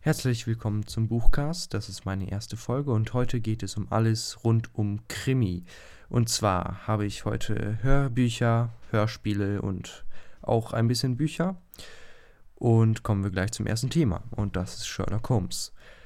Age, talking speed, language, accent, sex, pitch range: 20-39, 155 wpm, German, German, male, 100-120 Hz